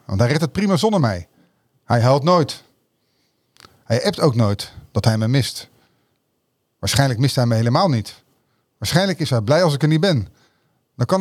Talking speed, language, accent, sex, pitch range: 185 wpm, Dutch, Dutch, male, 120-160 Hz